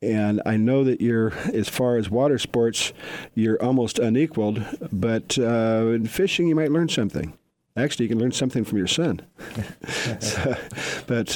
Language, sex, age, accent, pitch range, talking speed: English, male, 50-69, American, 95-120 Hz, 160 wpm